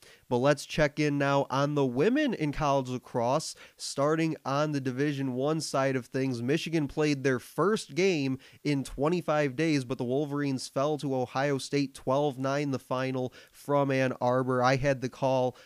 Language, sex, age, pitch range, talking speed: English, male, 20-39, 125-145 Hz, 170 wpm